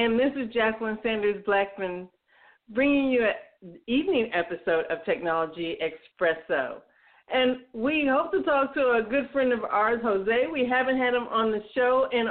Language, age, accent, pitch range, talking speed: English, 50-69, American, 190-250 Hz, 160 wpm